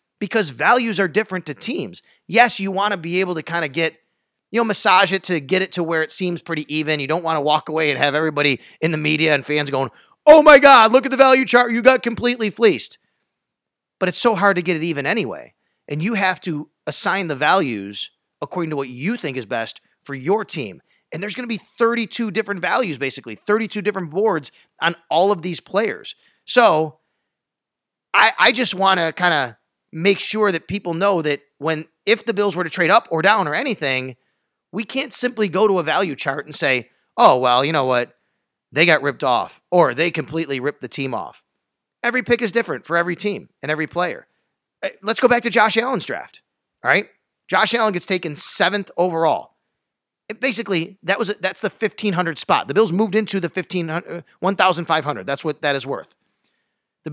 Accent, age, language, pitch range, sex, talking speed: American, 30-49, English, 155-215 Hz, male, 210 wpm